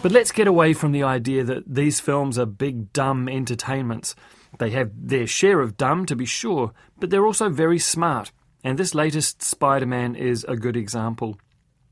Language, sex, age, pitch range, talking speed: English, male, 30-49, 125-165 Hz, 180 wpm